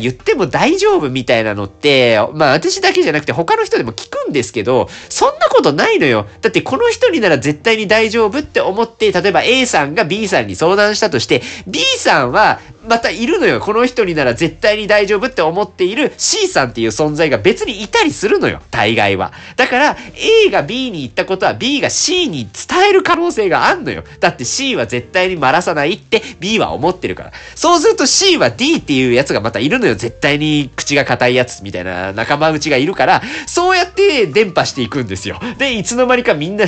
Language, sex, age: Japanese, male, 40-59